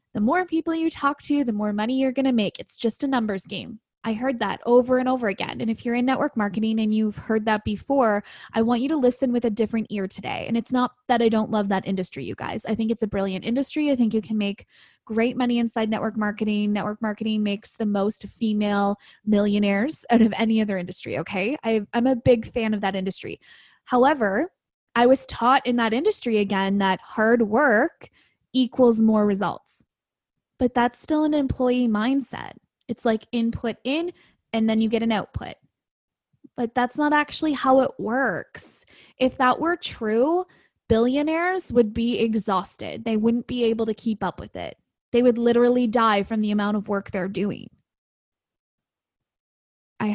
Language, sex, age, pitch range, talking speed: English, female, 20-39, 210-250 Hz, 190 wpm